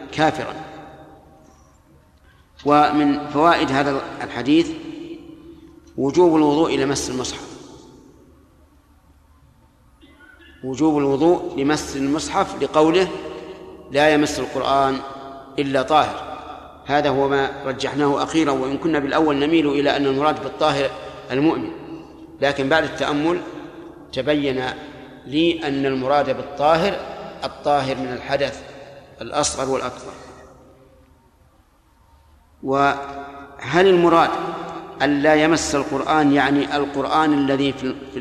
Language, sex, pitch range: Arabic, male, 135-165 Hz